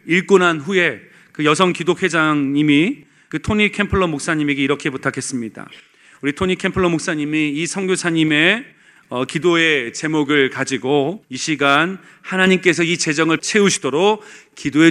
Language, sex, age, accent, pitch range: Korean, male, 40-59, native, 160-215 Hz